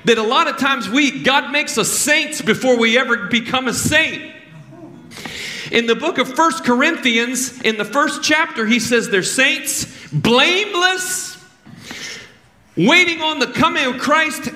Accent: American